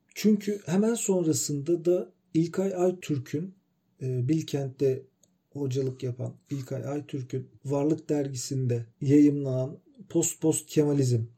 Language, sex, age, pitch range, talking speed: Turkish, male, 40-59, 125-160 Hz, 85 wpm